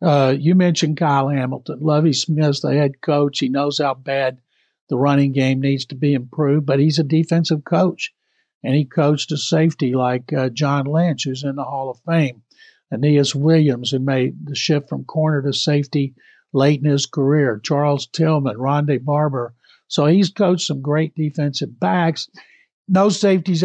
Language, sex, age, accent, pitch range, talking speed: English, male, 60-79, American, 140-165 Hz, 175 wpm